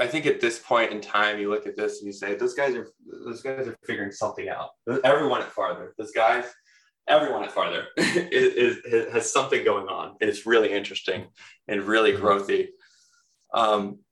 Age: 20-39